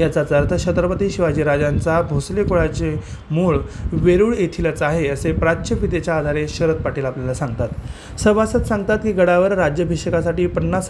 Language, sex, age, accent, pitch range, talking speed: Marathi, male, 30-49, native, 155-195 Hz, 115 wpm